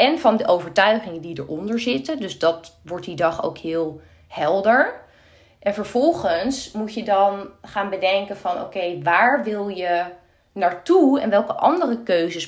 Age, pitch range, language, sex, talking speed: 20-39, 175-235 Hz, Dutch, female, 160 wpm